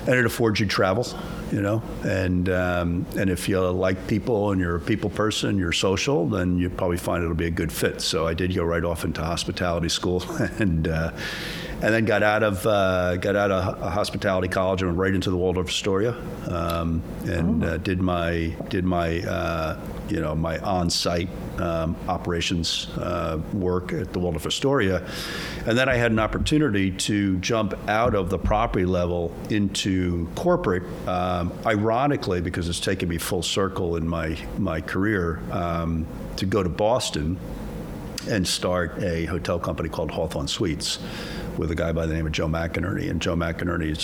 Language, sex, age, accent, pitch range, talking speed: English, male, 50-69, American, 85-95 Hz, 175 wpm